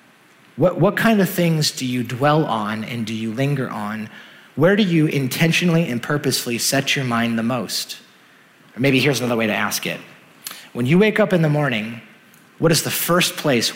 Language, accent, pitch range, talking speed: English, American, 120-145 Hz, 195 wpm